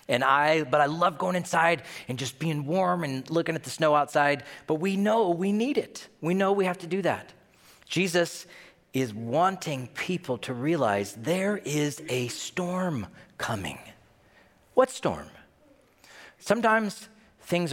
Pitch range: 115-165 Hz